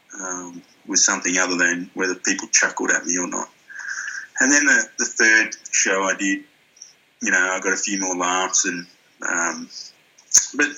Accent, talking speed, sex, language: Australian, 175 wpm, male, English